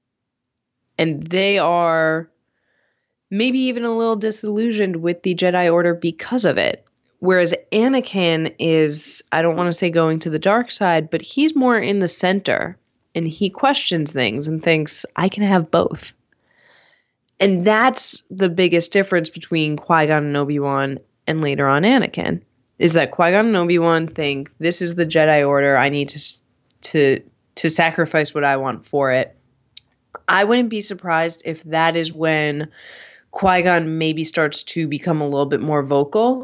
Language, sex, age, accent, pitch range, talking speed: English, female, 20-39, American, 145-185 Hz, 160 wpm